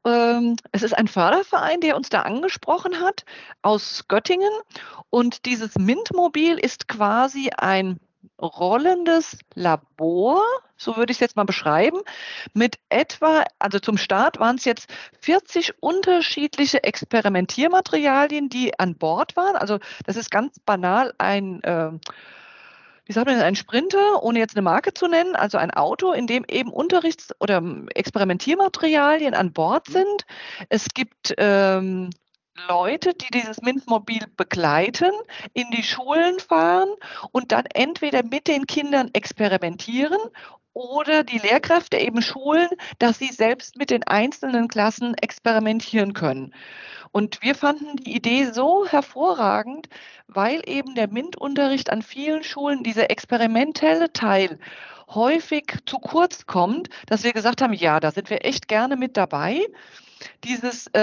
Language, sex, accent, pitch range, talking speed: German, female, German, 210-315 Hz, 135 wpm